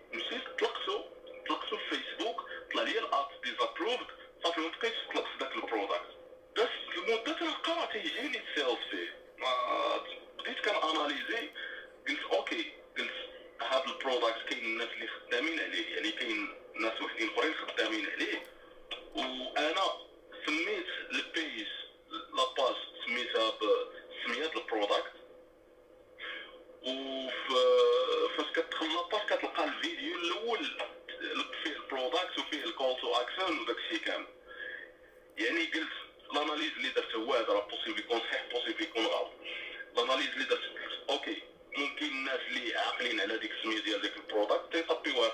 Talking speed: 120 wpm